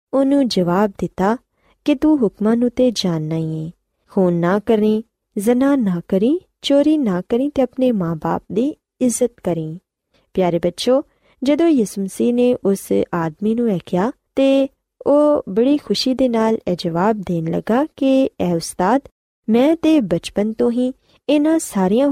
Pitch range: 185-255 Hz